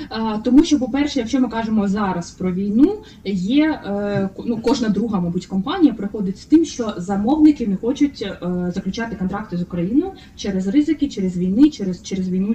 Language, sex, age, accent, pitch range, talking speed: Ukrainian, female, 20-39, native, 185-255 Hz, 160 wpm